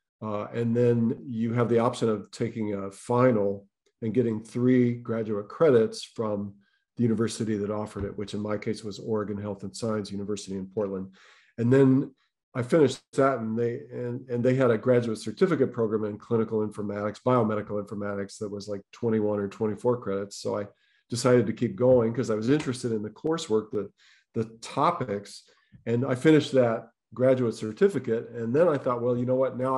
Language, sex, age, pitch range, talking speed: English, male, 40-59, 105-125 Hz, 180 wpm